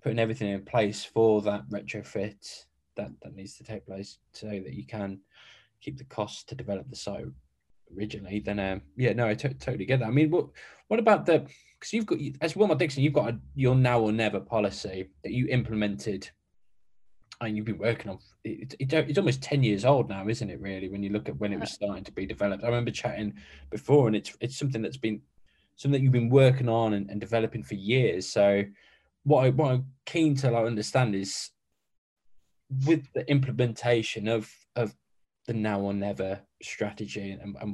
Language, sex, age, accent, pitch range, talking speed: English, male, 20-39, British, 100-125 Hz, 200 wpm